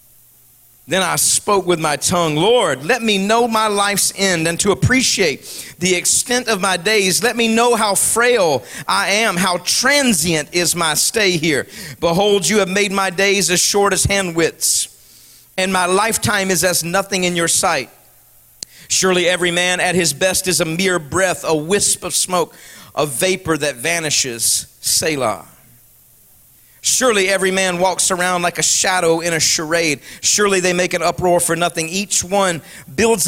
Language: English